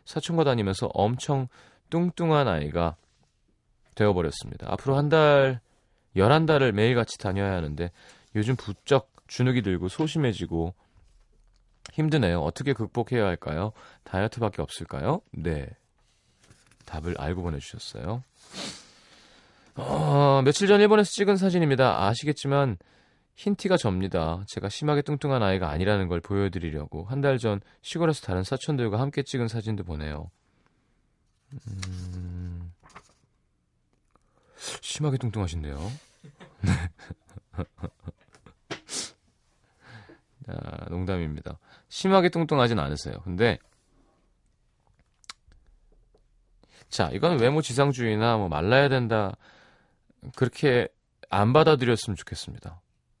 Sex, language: male, Korean